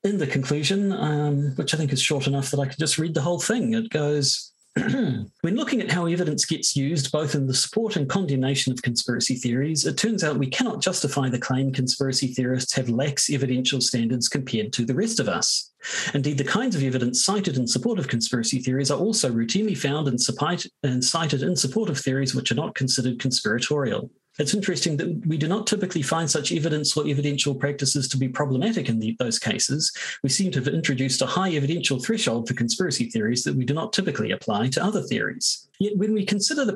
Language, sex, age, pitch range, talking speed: English, male, 40-59, 125-170 Hz, 205 wpm